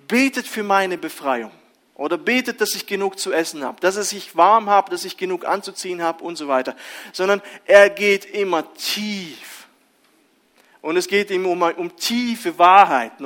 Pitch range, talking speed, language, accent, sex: 150-210 Hz, 170 wpm, German, German, male